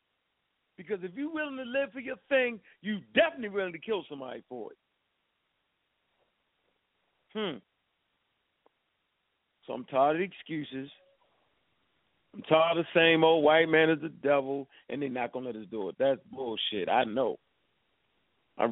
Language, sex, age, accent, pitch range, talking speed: English, male, 50-69, American, 145-215 Hz, 155 wpm